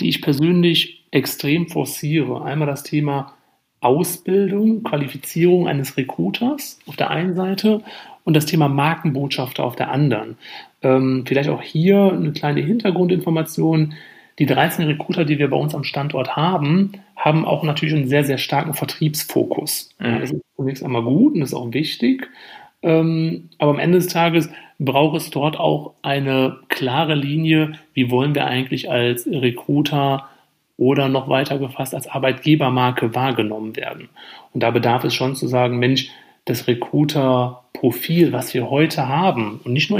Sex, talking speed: male, 150 wpm